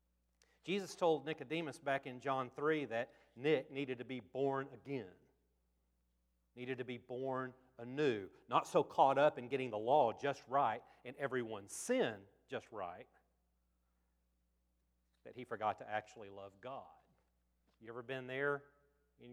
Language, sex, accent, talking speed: English, male, American, 145 wpm